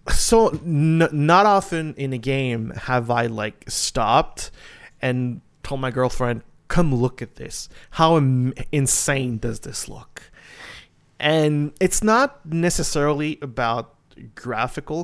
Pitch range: 115-150 Hz